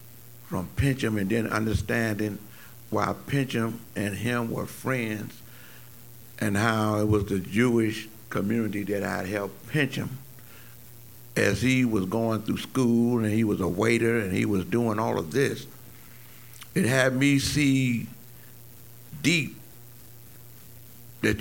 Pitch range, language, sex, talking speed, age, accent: 110-120 Hz, English, male, 130 wpm, 60-79, American